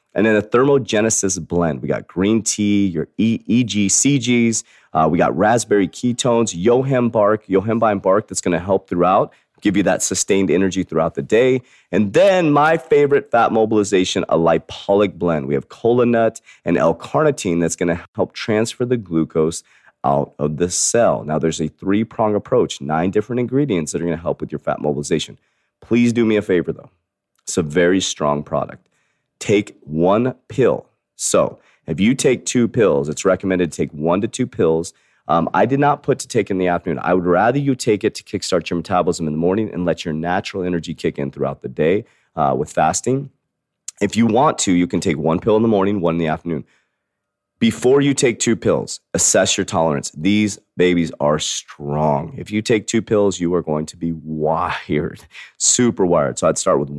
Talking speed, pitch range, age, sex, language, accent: 195 wpm, 85-115 Hz, 30-49, male, English, American